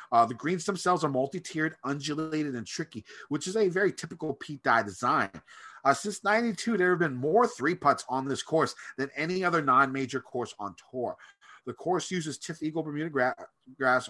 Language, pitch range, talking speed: English, 130-170 Hz, 190 wpm